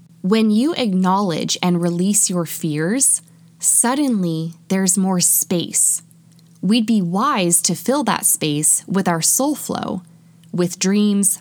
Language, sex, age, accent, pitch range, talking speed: English, female, 20-39, American, 165-210 Hz, 125 wpm